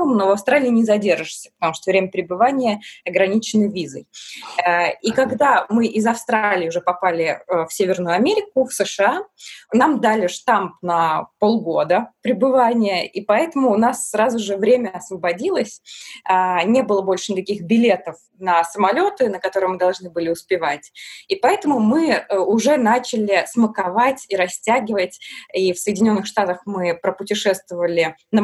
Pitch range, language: 180-230 Hz, Russian